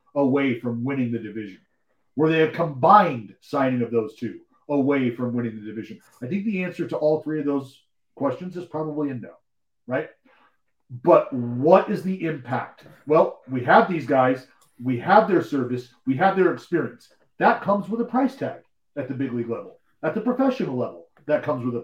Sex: male